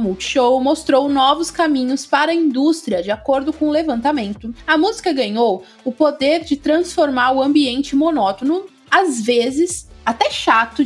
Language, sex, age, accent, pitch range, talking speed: Portuguese, female, 20-39, Brazilian, 250-315 Hz, 145 wpm